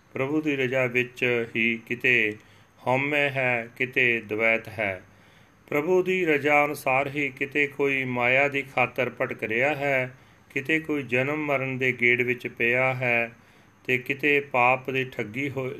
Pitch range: 115-135 Hz